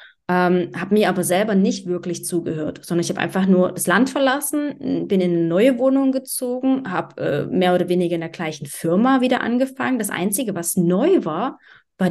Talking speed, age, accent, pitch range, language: 190 wpm, 20-39, German, 180-225 Hz, German